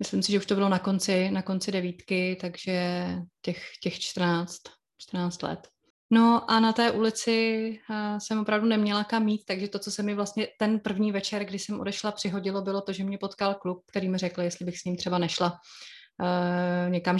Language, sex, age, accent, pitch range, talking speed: Czech, female, 20-39, native, 180-200 Hz, 200 wpm